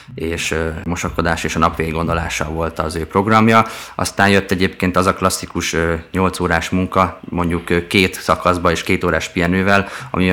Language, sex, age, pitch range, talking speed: Hungarian, male, 20-39, 85-100 Hz, 155 wpm